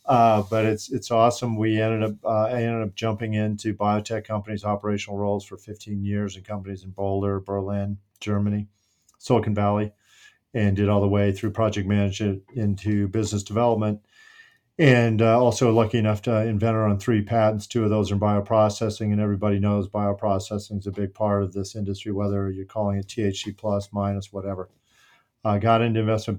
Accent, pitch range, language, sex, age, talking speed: American, 100-115 Hz, English, male, 40-59, 180 wpm